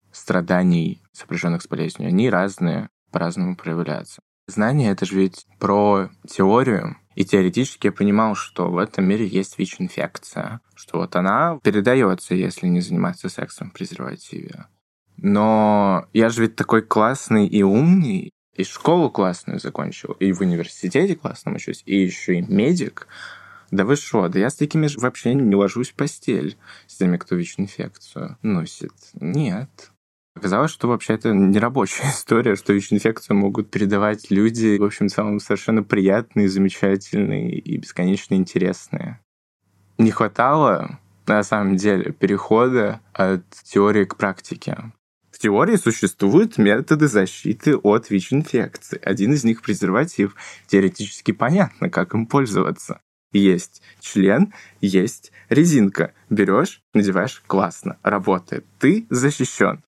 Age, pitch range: 20-39, 95-115 Hz